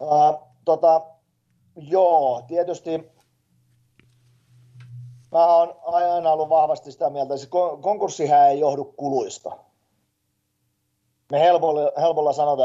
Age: 30-49